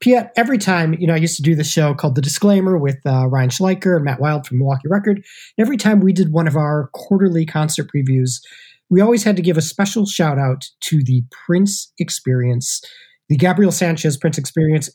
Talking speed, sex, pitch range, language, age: 210 wpm, male, 145-190 Hz, English, 30-49